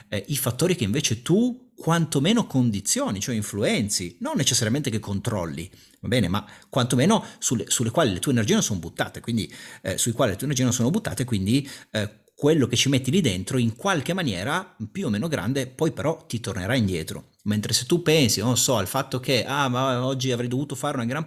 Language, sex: Italian, male